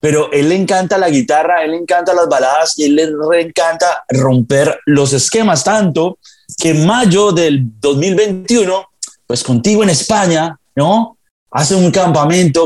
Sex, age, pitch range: male, 30-49, 145-185 Hz